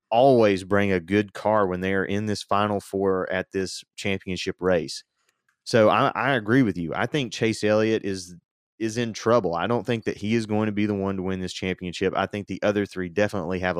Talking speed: 220 wpm